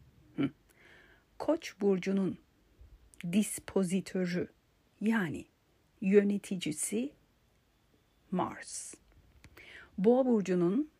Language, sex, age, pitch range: Turkish, female, 50-69, 170-220 Hz